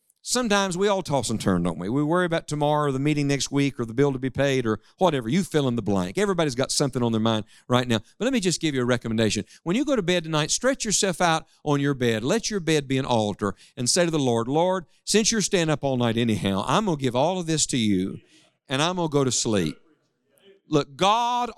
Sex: male